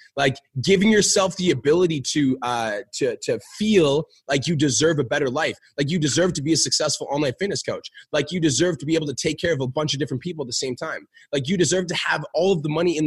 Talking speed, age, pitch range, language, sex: 255 wpm, 20-39, 140-175 Hz, English, male